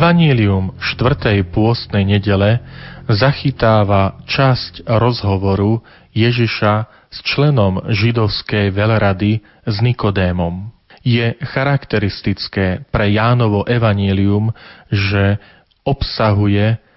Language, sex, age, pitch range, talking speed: Slovak, male, 40-59, 100-115 Hz, 80 wpm